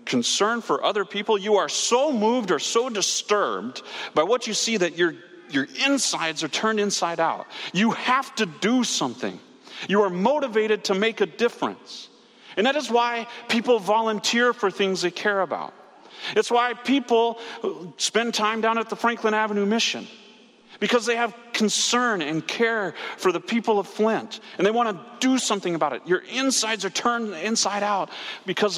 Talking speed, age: 175 wpm, 40-59